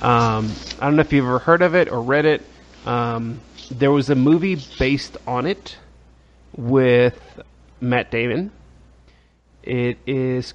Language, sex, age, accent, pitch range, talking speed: English, male, 30-49, American, 115-150 Hz, 150 wpm